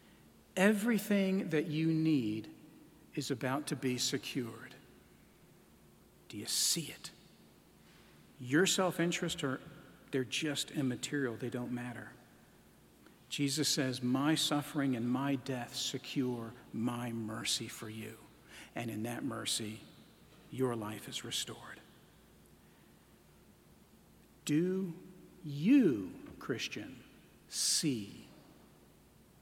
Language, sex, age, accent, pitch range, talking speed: English, male, 50-69, American, 125-165 Hz, 95 wpm